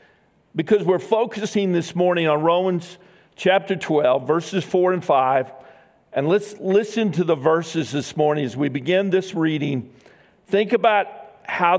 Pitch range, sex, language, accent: 160-205 Hz, male, English, American